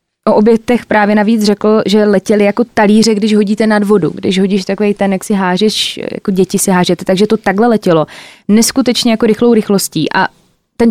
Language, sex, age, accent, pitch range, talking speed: Czech, female, 20-39, native, 185-220 Hz, 185 wpm